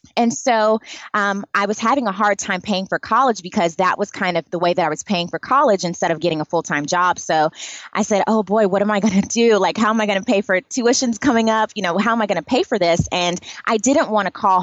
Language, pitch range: English, 175-225 Hz